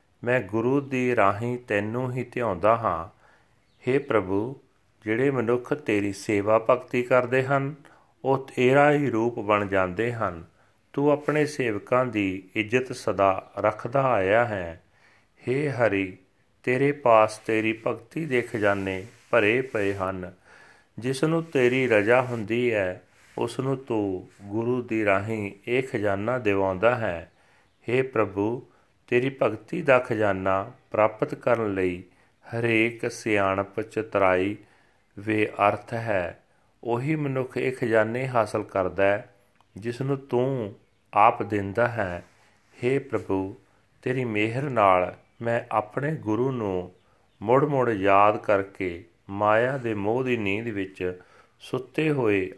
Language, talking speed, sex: Punjabi, 120 wpm, male